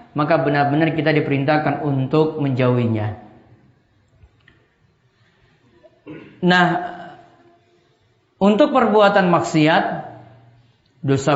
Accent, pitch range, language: native, 135-180 Hz, Indonesian